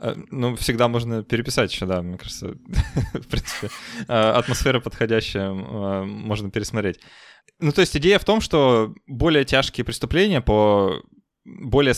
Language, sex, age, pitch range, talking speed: Russian, male, 20-39, 100-130 Hz, 130 wpm